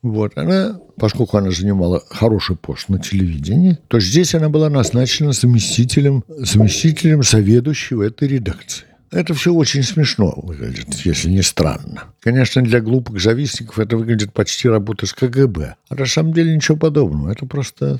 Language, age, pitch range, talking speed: Russian, 60-79, 100-140 Hz, 150 wpm